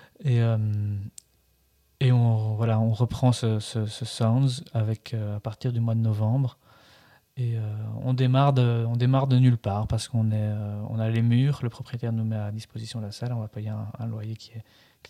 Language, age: French, 20-39